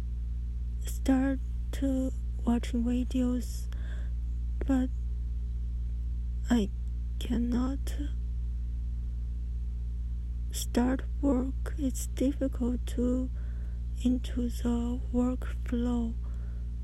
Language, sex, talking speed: English, female, 50 wpm